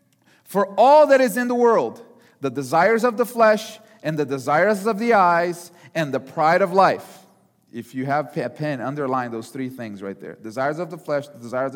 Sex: male